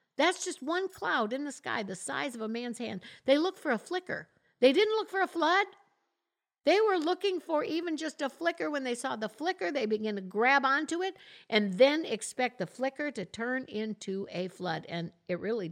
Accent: American